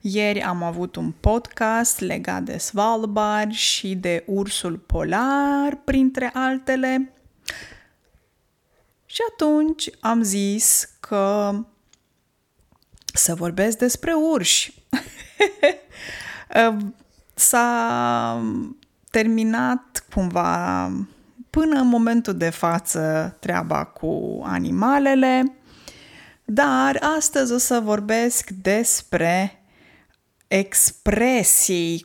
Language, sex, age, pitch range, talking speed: Romanian, female, 20-39, 195-260 Hz, 75 wpm